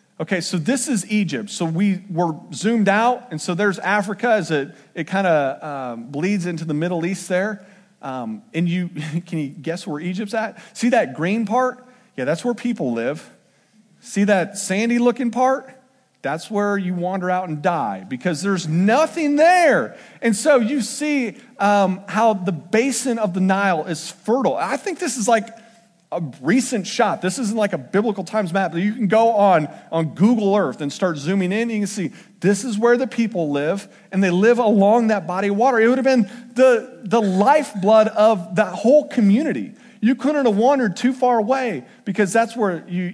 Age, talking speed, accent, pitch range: 40-59, 195 wpm, American, 175-235 Hz